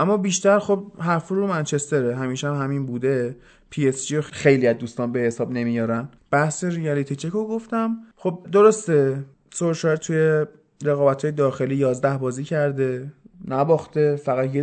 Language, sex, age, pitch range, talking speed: Persian, male, 20-39, 135-185 Hz, 140 wpm